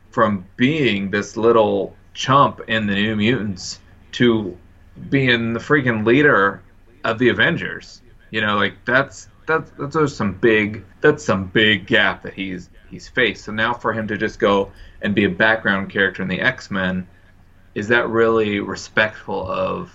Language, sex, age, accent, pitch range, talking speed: English, male, 20-39, American, 95-115 Hz, 160 wpm